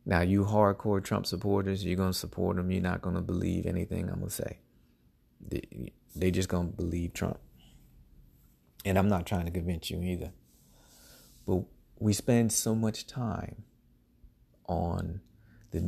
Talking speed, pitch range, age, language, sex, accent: 160 wpm, 90-110 Hz, 30-49, English, male, American